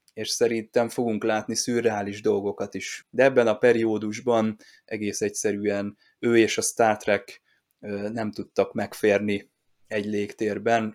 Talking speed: 125 wpm